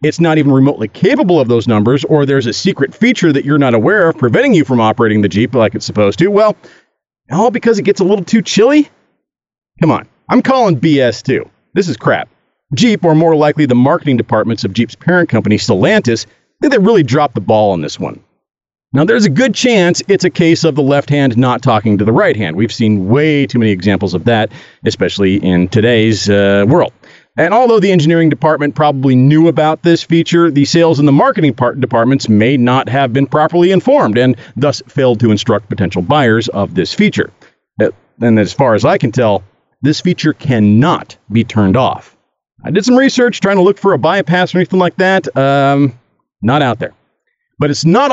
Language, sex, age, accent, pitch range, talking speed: English, male, 40-59, American, 115-170 Hz, 205 wpm